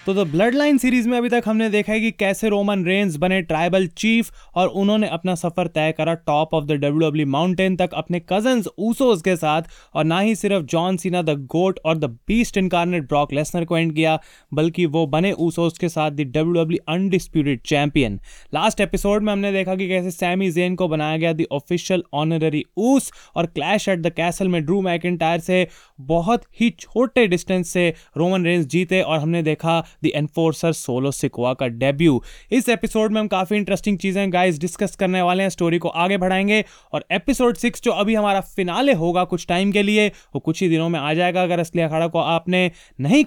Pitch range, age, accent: 165-195 Hz, 20-39, native